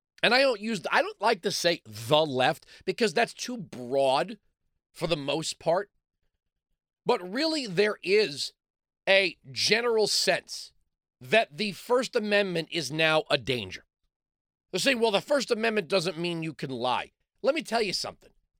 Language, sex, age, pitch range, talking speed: English, male, 40-59, 160-220 Hz, 160 wpm